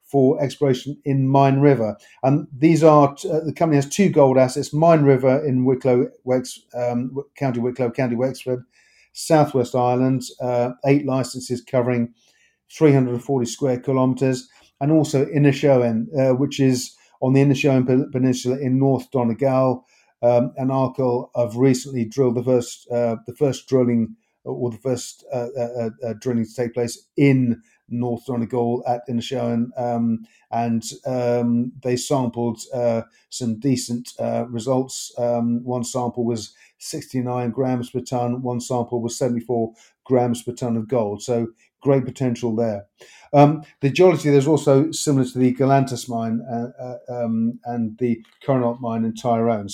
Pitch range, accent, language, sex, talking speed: 120-135 Hz, British, English, male, 155 wpm